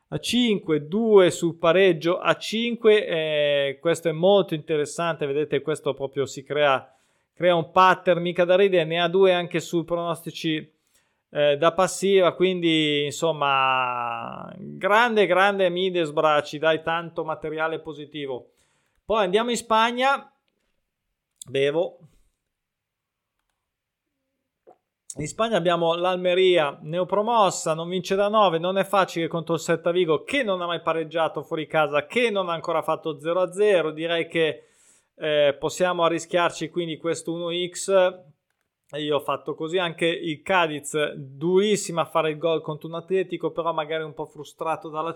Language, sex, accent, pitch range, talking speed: Italian, male, native, 150-185 Hz, 140 wpm